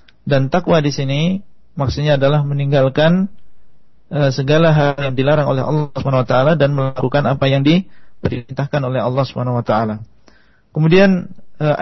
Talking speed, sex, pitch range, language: 140 wpm, male, 140-160 Hz, Indonesian